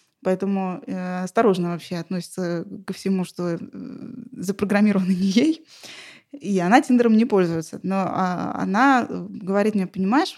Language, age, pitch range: Russian, 20-39, 195-240 Hz